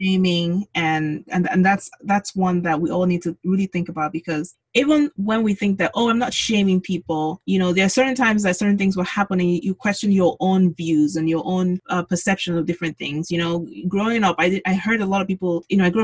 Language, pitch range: English, 175-225 Hz